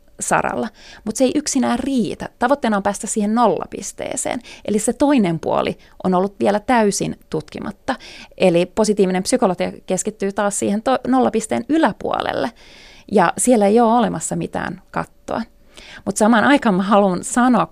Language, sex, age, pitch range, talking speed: Finnish, female, 30-49, 175-230 Hz, 135 wpm